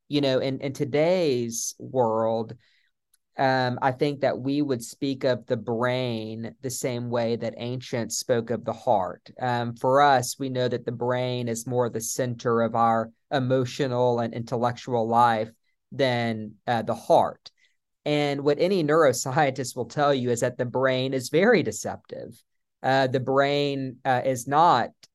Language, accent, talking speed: English, American, 160 wpm